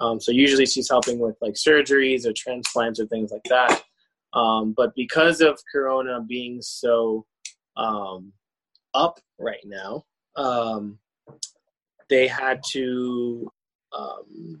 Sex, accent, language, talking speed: male, American, English, 125 wpm